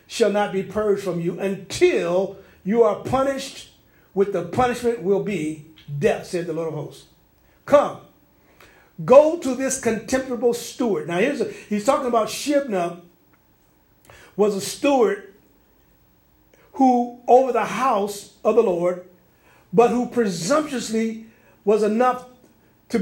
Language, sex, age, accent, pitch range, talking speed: English, male, 50-69, American, 185-240 Hz, 130 wpm